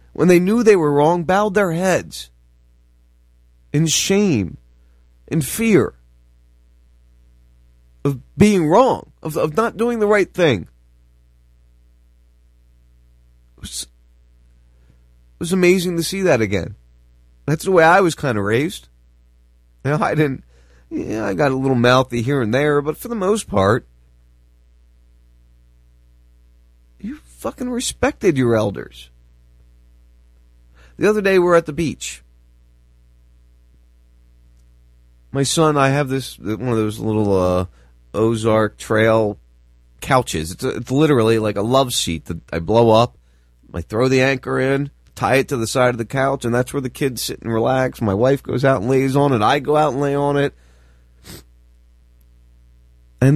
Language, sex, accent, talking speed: English, male, American, 150 wpm